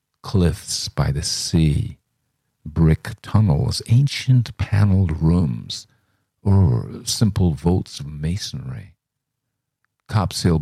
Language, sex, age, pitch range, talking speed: English, male, 50-69, 80-120 Hz, 85 wpm